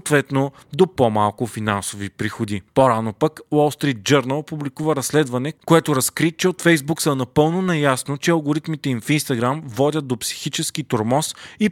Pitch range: 120-155 Hz